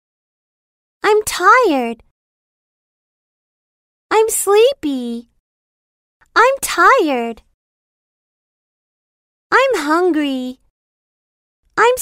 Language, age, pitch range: Chinese, 30-49, 275-420 Hz